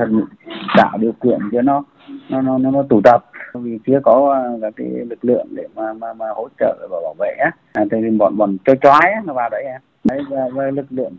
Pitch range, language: 125-170 Hz, Vietnamese